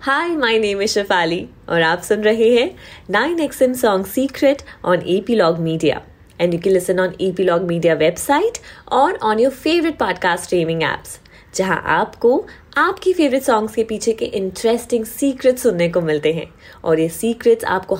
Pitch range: 175-260 Hz